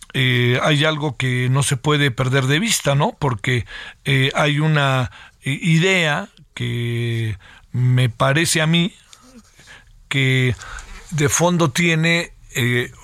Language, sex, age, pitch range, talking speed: Spanish, male, 50-69, 130-155 Hz, 120 wpm